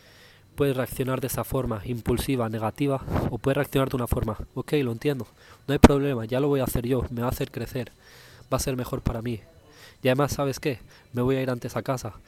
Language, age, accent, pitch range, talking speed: Spanish, 20-39, Spanish, 115-135 Hz, 230 wpm